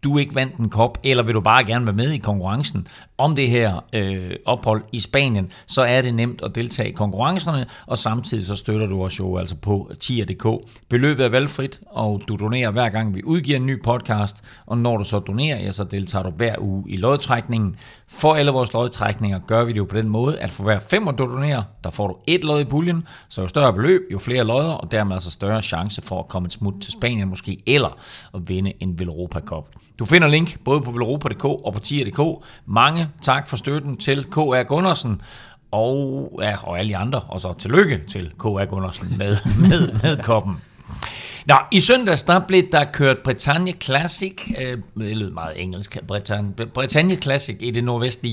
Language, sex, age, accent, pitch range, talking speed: Danish, male, 40-59, native, 100-135 Hz, 200 wpm